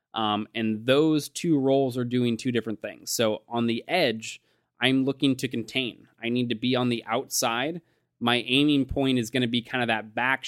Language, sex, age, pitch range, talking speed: English, male, 20-39, 110-130 Hz, 205 wpm